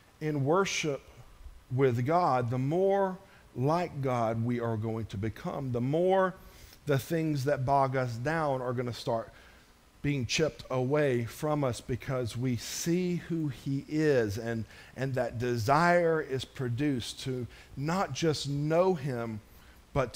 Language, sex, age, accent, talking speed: English, male, 50-69, American, 145 wpm